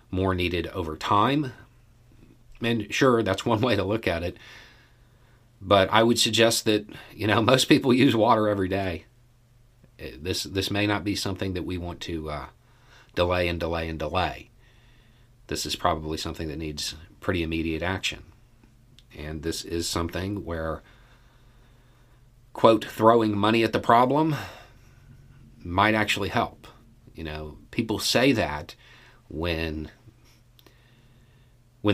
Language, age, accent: English, 40-59, American